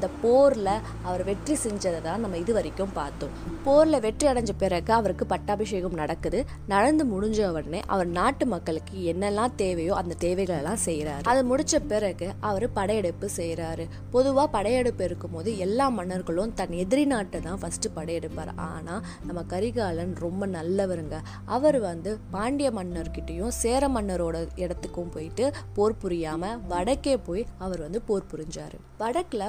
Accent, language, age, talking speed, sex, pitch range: native, Tamil, 20-39, 125 wpm, female, 175-225 Hz